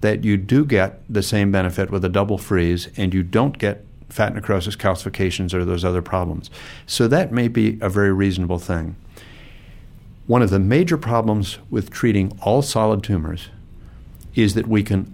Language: English